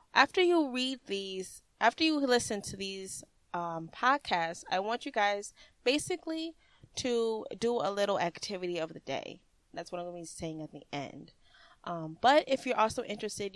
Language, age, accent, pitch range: English, 20-39, American, 180-245 Hz